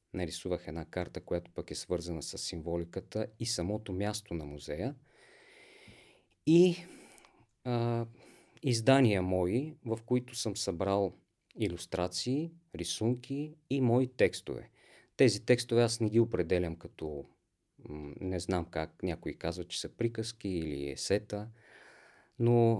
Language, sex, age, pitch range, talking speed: Bulgarian, male, 40-59, 90-125 Hz, 120 wpm